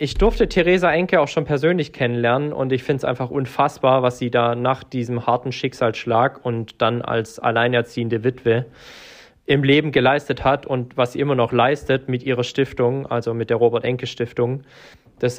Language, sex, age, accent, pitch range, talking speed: German, male, 20-39, German, 120-135 Hz, 175 wpm